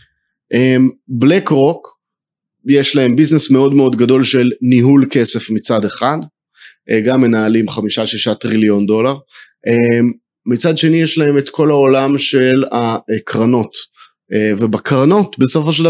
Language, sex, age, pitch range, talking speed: Hebrew, male, 30-49, 115-145 Hz, 115 wpm